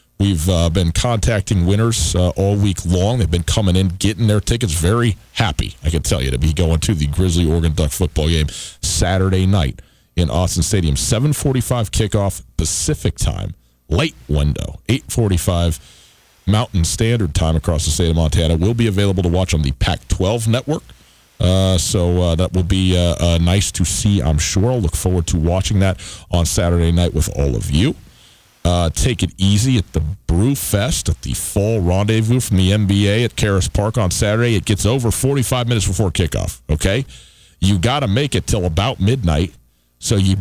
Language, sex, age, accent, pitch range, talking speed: English, male, 40-59, American, 85-115 Hz, 185 wpm